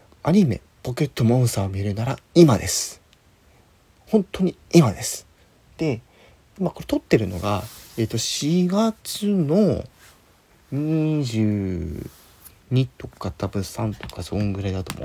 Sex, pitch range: male, 90-130 Hz